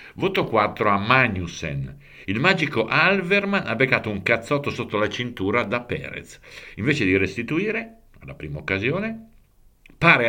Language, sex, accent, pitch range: Italian, male, native, 90-130 Hz